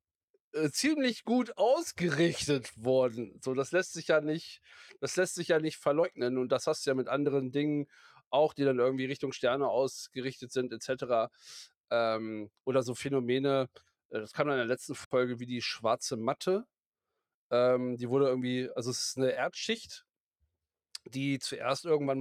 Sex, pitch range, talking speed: male, 130-160 Hz, 160 wpm